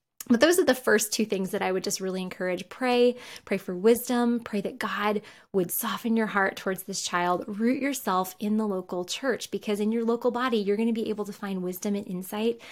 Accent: American